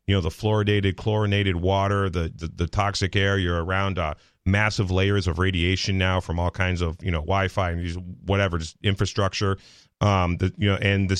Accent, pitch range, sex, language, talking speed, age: American, 95-110 Hz, male, English, 200 wpm, 30-49